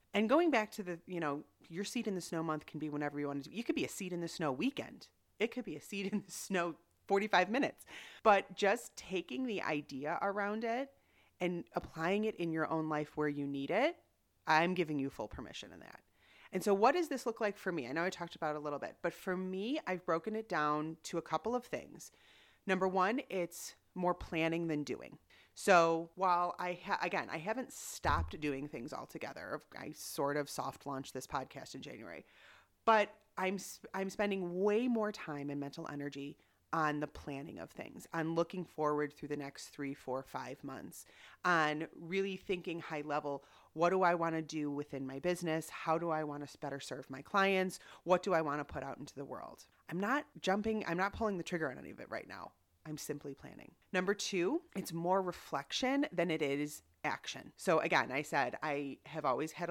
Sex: female